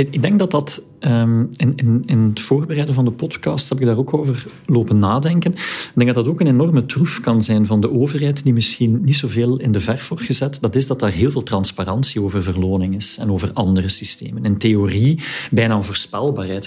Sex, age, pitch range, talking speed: male, 40-59, 105-145 Hz, 210 wpm